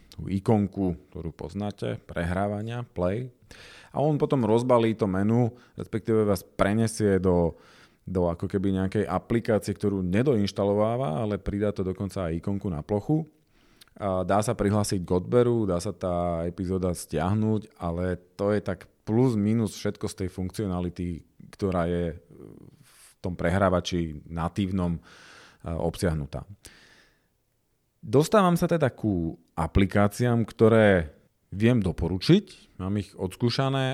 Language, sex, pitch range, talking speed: Slovak, male, 90-110 Hz, 120 wpm